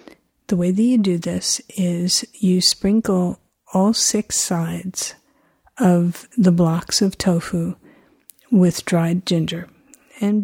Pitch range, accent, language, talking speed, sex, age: 180-225 Hz, American, English, 120 wpm, female, 50-69